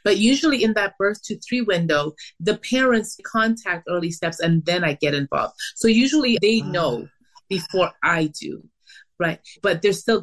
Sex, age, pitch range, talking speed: female, 30-49, 160-205 Hz, 170 wpm